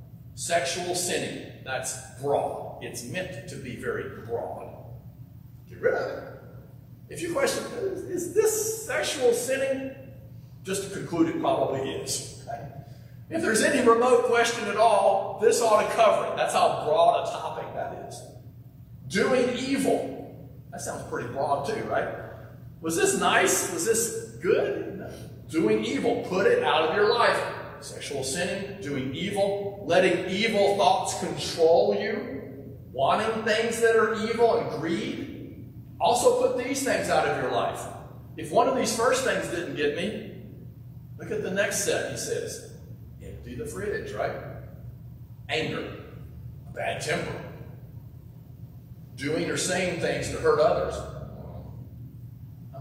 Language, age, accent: English, 50-69, American